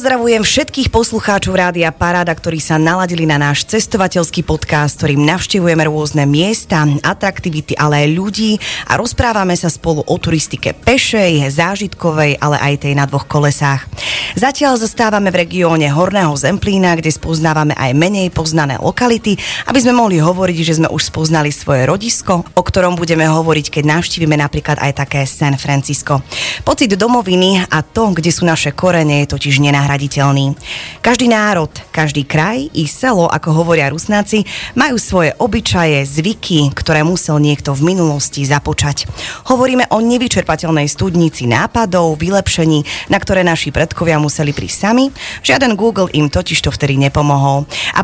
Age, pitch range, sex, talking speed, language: 30-49, 145-190 Hz, female, 145 wpm, Slovak